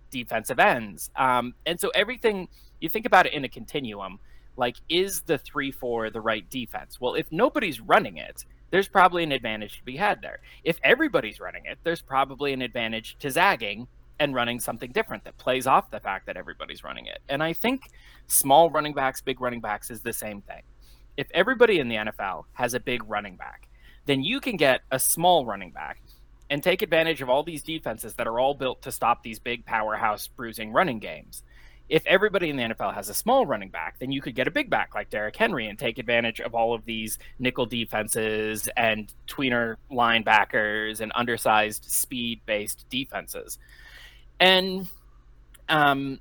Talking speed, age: 190 wpm, 20-39